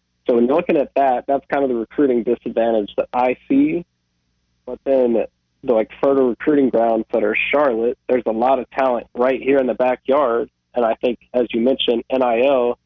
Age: 20-39